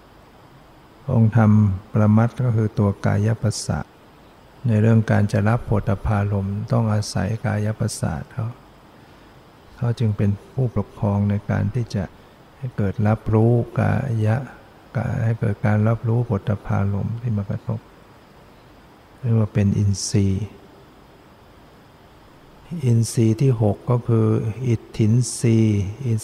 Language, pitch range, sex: Thai, 105-120 Hz, male